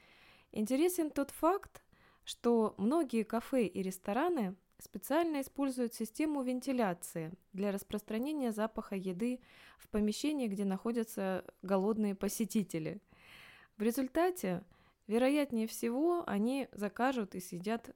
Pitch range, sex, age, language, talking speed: 185-245 Hz, female, 20-39, Russian, 100 wpm